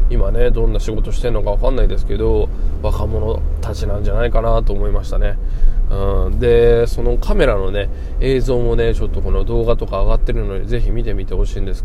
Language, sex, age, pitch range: Japanese, male, 20-39, 95-125 Hz